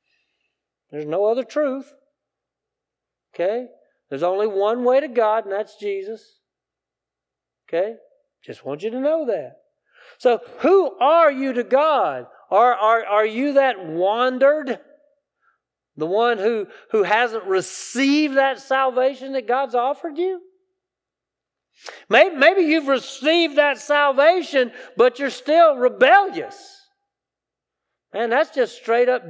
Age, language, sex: 40-59, English, male